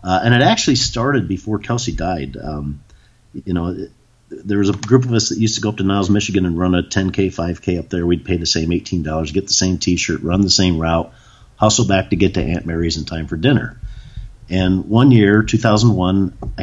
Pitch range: 85-110 Hz